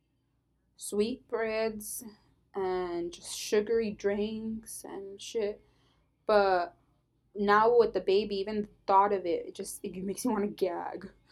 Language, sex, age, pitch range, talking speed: English, female, 20-39, 195-255 Hz, 140 wpm